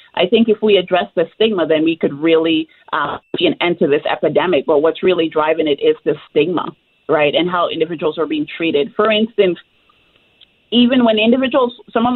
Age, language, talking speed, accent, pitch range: 30-49, English, 195 wpm, American, 170-220 Hz